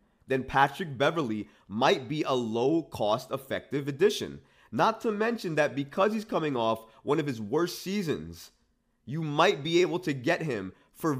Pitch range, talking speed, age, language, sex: 120-160 Hz, 160 wpm, 30-49, English, male